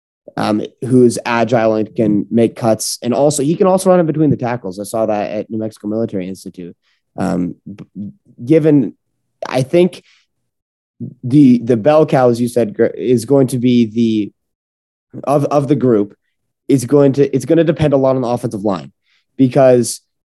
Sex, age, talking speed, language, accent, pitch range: male, 30-49, 175 wpm, English, American, 115-140 Hz